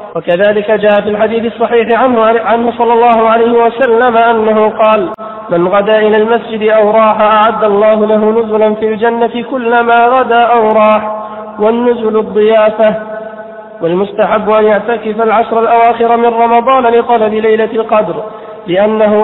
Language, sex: Arabic, male